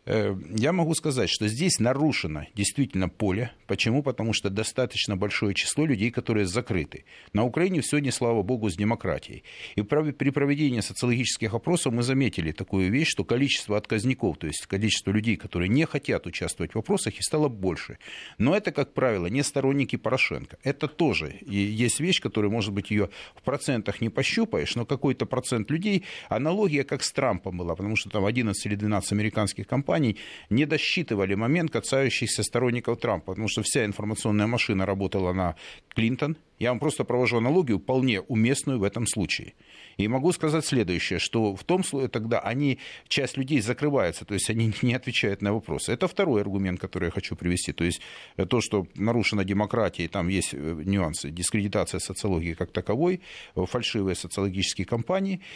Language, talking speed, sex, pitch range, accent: Russian, 165 wpm, male, 100-135 Hz, native